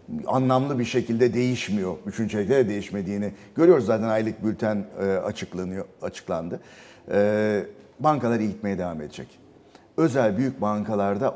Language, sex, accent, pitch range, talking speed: Turkish, male, native, 105-135 Hz, 110 wpm